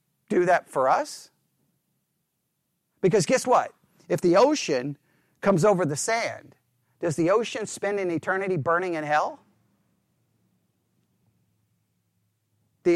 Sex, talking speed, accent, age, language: male, 110 wpm, American, 40-59, English